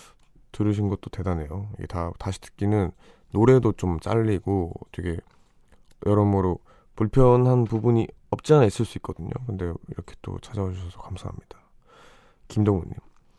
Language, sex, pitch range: Korean, male, 85-110 Hz